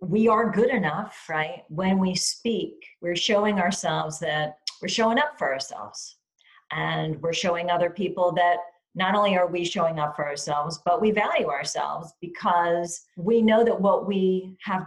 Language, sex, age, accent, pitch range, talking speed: English, female, 40-59, American, 160-205 Hz, 170 wpm